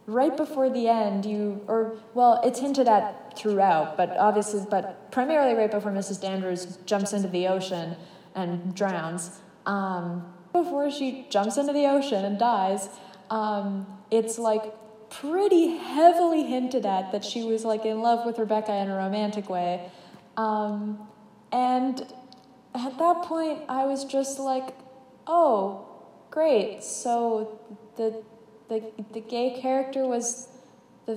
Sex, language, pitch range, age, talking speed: female, English, 190-240 Hz, 20-39, 140 wpm